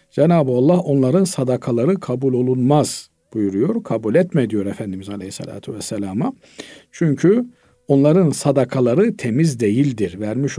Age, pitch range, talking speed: 50-69, 115-175 Hz, 110 wpm